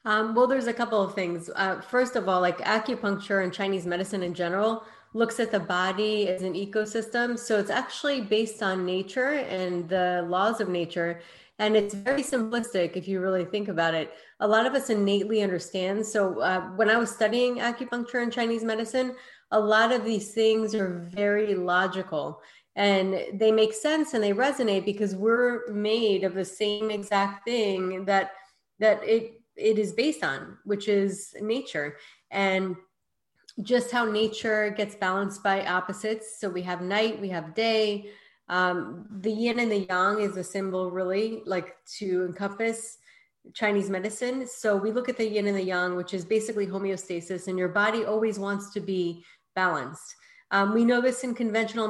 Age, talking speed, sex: 30-49, 175 wpm, female